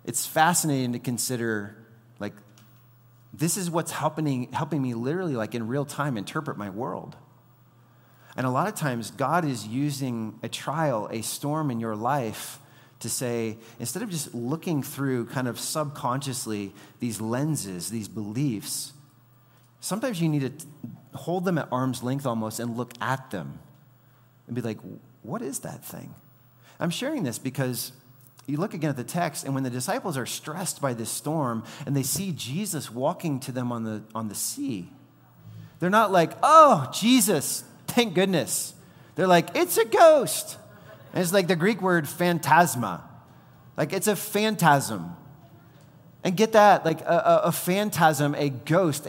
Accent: American